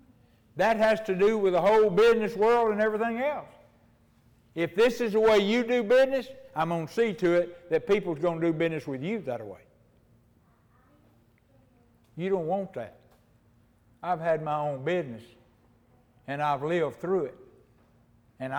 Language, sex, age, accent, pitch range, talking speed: English, male, 60-79, American, 130-190 Hz, 165 wpm